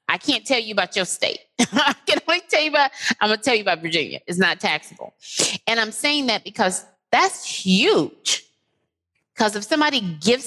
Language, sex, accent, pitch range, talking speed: English, female, American, 175-250 Hz, 190 wpm